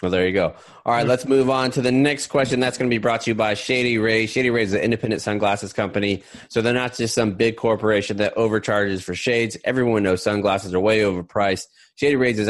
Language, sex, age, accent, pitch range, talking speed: English, male, 20-39, American, 100-125 Hz, 240 wpm